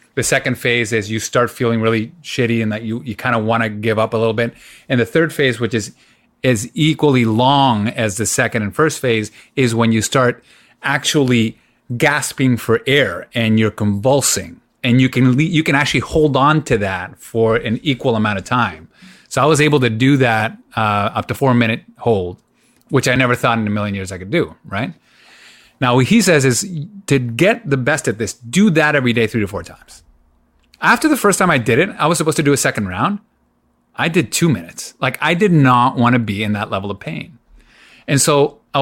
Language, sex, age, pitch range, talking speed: English, male, 30-49, 115-145 Hz, 220 wpm